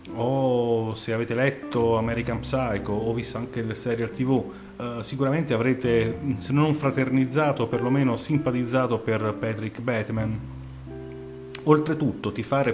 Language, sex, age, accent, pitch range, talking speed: Italian, male, 30-49, native, 105-135 Hz, 125 wpm